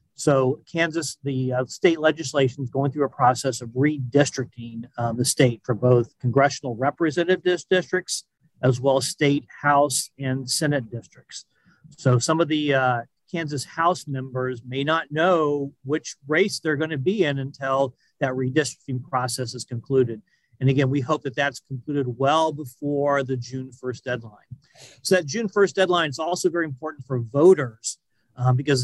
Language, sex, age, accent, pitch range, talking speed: English, male, 40-59, American, 130-155 Hz, 160 wpm